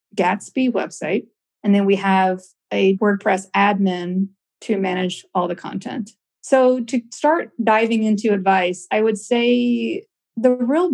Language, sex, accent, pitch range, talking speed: English, female, American, 185-225 Hz, 135 wpm